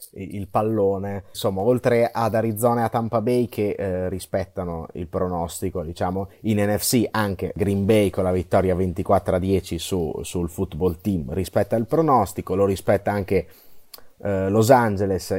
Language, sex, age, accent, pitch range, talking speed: Italian, male, 30-49, native, 100-125 Hz, 155 wpm